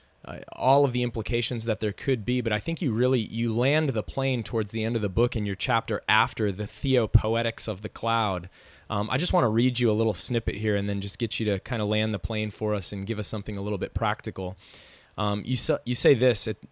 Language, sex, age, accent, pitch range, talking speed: English, male, 20-39, American, 100-125 Hz, 260 wpm